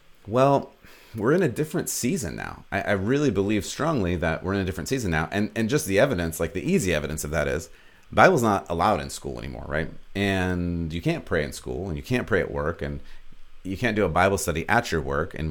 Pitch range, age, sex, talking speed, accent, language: 80-110 Hz, 30-49, male, 235 wpm, American, English